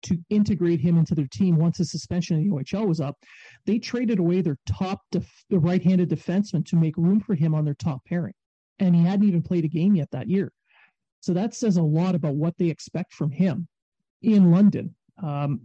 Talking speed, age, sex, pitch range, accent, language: 215 wpm, 40-59, male, 165-200 Hz, American, English